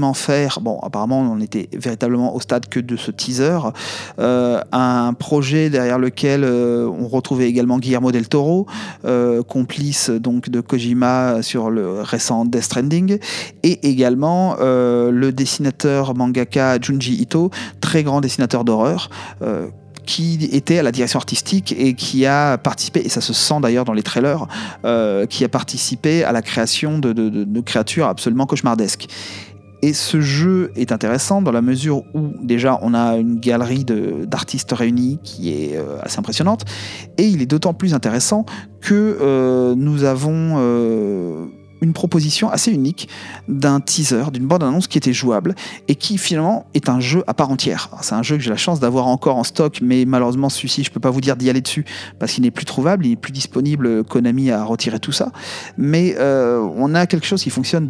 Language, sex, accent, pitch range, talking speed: French, male, French, 120-150 Hz, 180 wpm